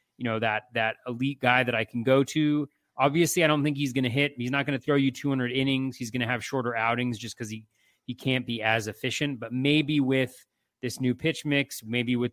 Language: English